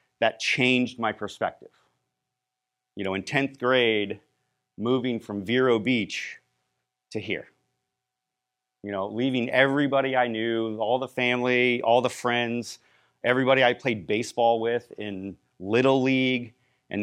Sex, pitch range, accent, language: male, 110-125 Hz, American, English